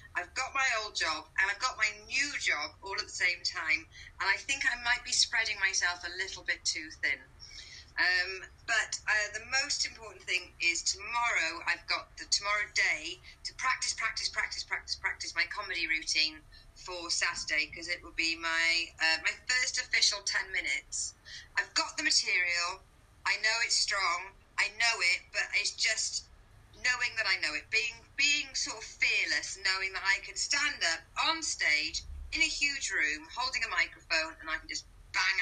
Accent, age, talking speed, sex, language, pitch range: British, 30-49, 185 wpm, female, English, 175-250 Hz